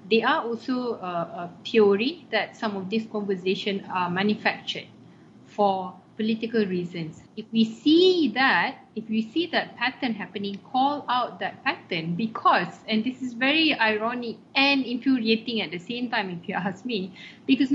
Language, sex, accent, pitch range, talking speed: English, female, Malaysian, 215-255 Hz, 155 wpm